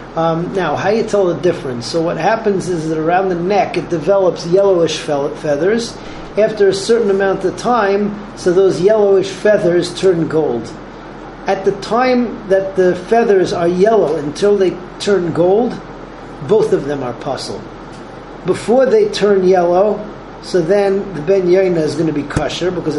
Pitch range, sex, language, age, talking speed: 160-195 Hz, male, English, 40-59, 160 wpm